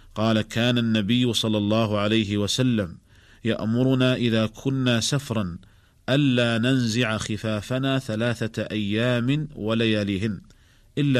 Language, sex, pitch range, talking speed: Arabic, male, 105-120 Hz, 95 wpm